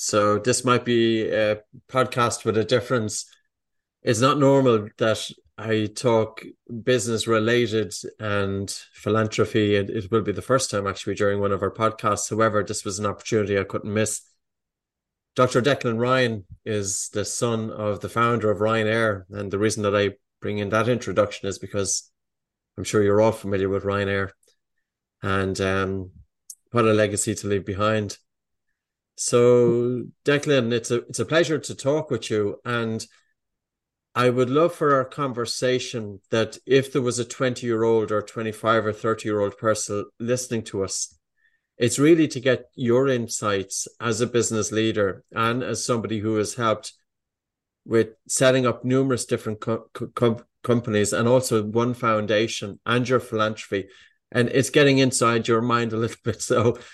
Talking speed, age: 155 wpm, 30-49